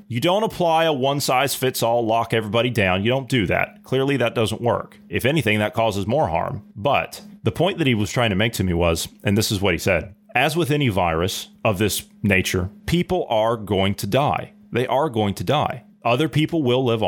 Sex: male